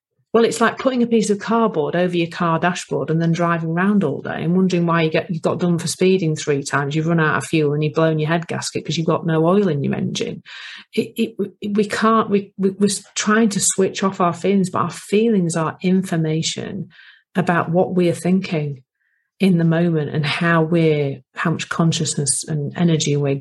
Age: 40-59